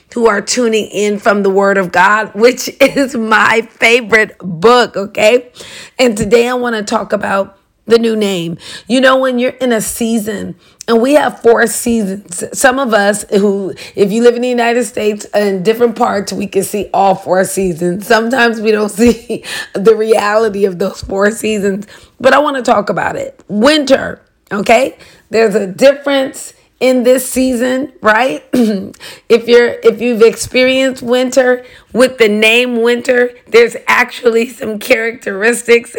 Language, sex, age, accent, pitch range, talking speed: English, female, 30-49, American, 210-255 Hz, 160 wpm